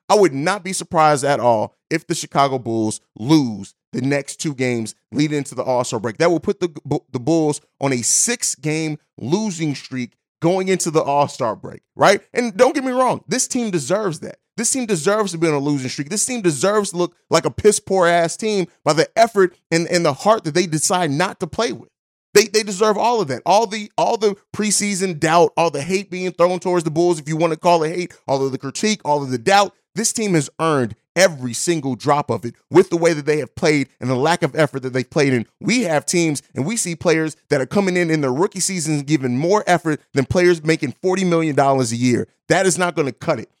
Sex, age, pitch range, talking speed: male, 30-49, 145-190 Hz, 235 wpm